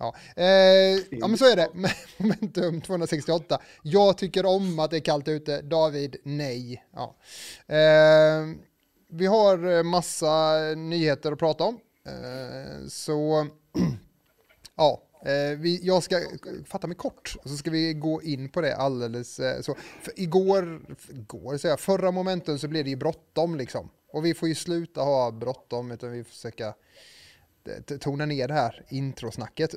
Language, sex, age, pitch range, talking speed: Swedish, male, 20-39, 140-180 Hz, 155 wpm